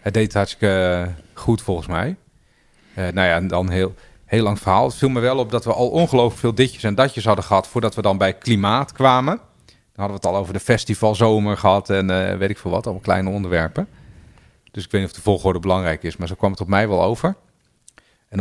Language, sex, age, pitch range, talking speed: Dutch, male, 40-59, 95-115 Hz, 240 wpm